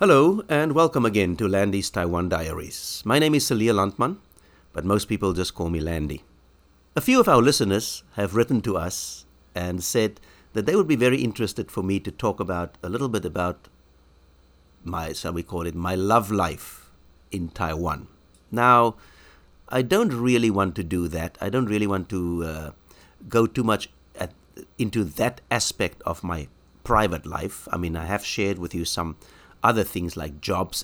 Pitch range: 85-115 Hz